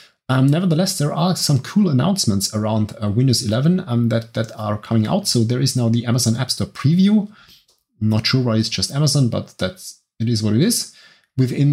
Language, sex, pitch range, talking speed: English, male, 110-150 Hz, 205 wpm